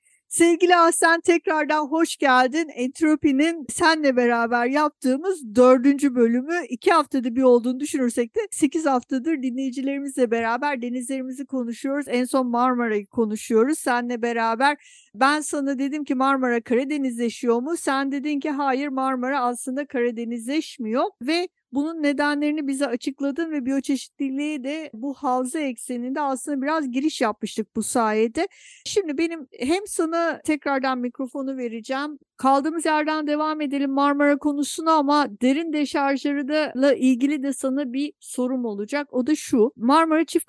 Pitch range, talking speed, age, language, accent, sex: 240-290 Hz, 130 wpm, 50-69, Turkish, native, female